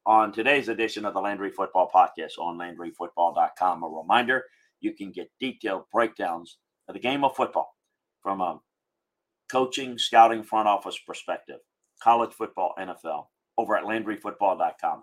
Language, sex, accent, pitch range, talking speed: English, male, American, 95-125 Hz, 140 wpm